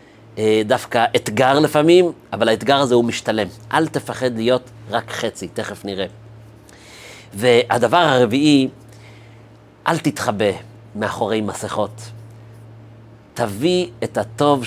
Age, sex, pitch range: 40-59, male, 110-125 Hz